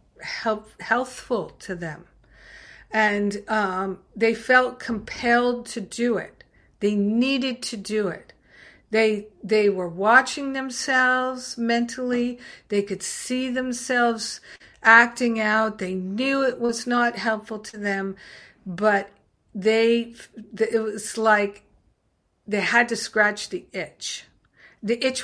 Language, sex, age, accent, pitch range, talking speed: English, female, 50-69, American, 195-235 Hz, 120 wpm